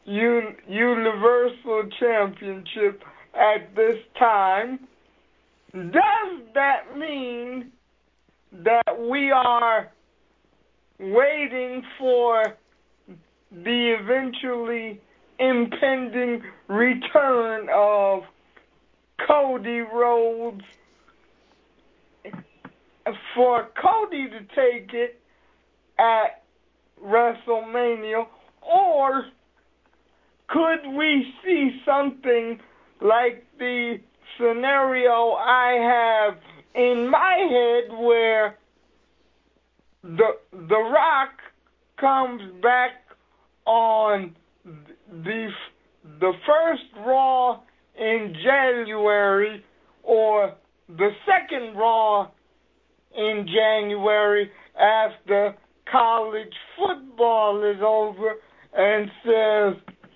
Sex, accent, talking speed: male, American, 65 wpm